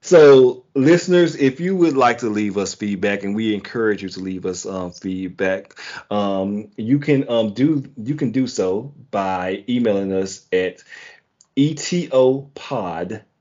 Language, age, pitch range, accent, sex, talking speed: English, 30-49, 105-130 Hz, American, male, 150 wpm